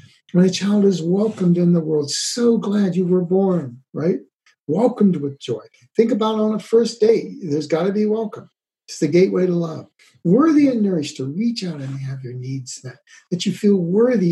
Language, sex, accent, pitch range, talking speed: English, male, American, 160-215 Hz, 195 wpm